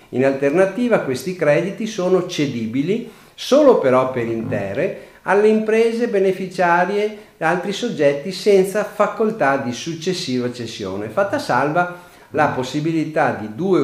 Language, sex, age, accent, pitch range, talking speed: Italian, male, 50-69, native, 125-195 Hz, 115 wpm